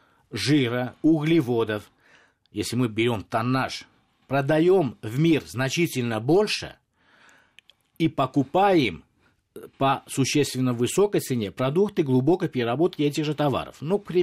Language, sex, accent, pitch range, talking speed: Russian, male, native, 115-155 Hz, 100 wpm